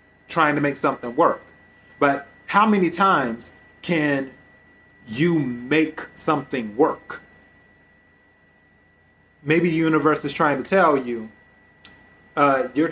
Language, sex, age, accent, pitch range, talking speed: English, male, 30-49, American, 95-155 Hz, 110 wpm